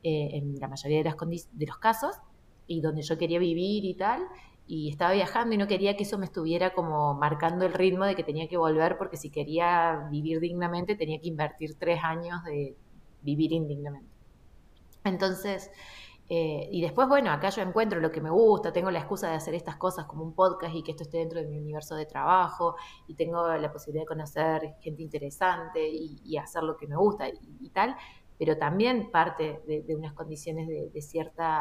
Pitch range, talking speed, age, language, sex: 155-200 Hz, 200 wpm, 20-39, Spanish, female